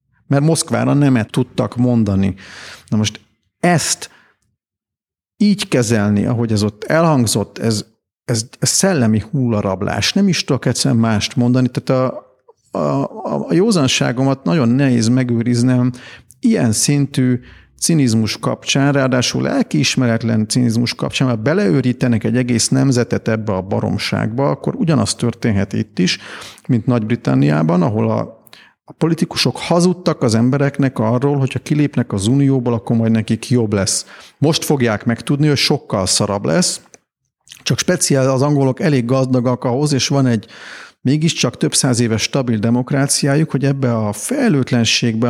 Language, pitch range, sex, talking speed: Hungarian, 115-140 Hz, male, 130 wpm